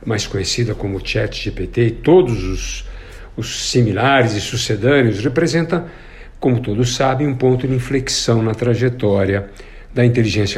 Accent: Brazilian